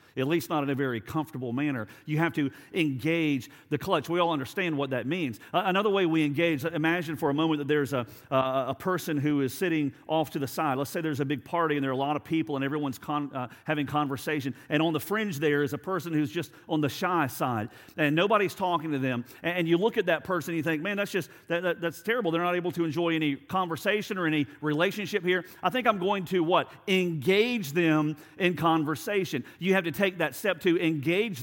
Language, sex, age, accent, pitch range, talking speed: English, male, 50-69, American, 150-185 Hz, 240 wpm